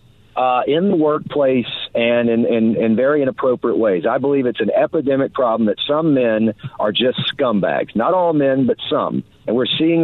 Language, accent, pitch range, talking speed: English, American, 125-170 Hz, 185 wpm